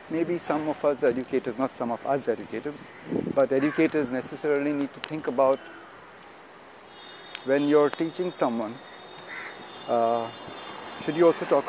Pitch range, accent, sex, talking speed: 125-155 Hz, Indian, male, 135 wpm